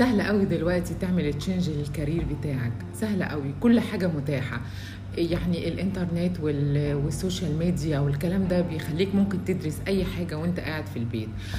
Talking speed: 145 wpm